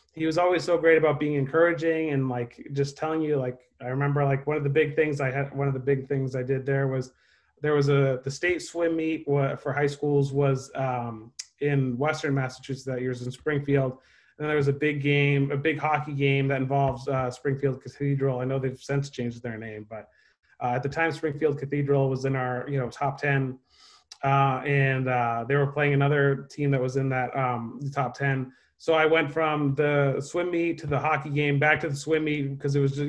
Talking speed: 230 wpm